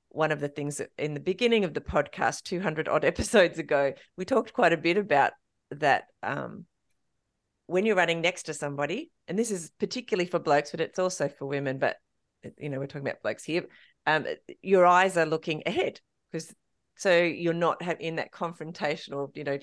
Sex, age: female, 40-59